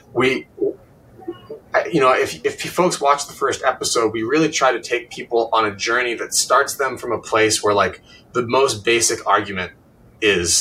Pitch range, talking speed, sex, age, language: 110-160 Hz, 180 wpm, male, 30-49, English